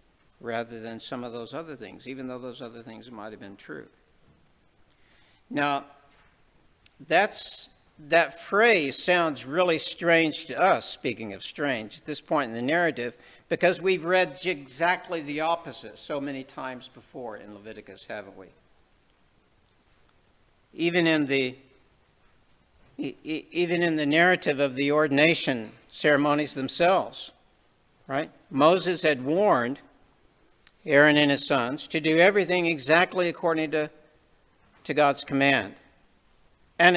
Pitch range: 135-170 Hz